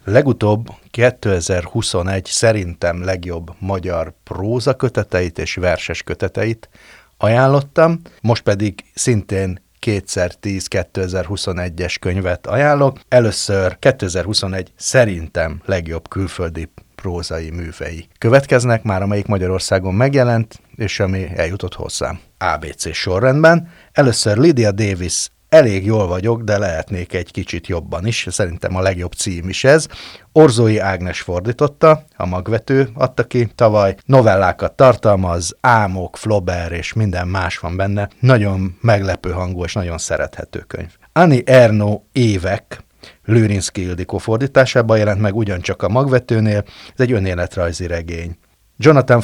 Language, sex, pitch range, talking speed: Hungarian, male, 95-120 Hz, 115 wpm